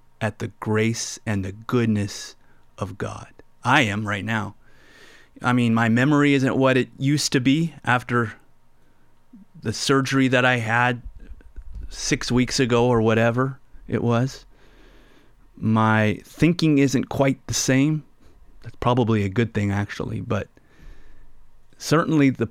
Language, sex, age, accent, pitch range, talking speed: English, male, 30-49, American, 110-130 Hz, 135 wpm